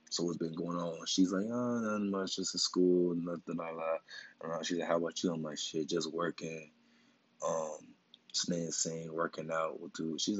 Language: English